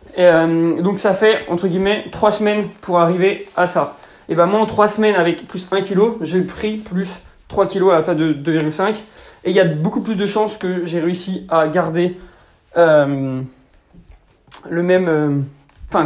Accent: French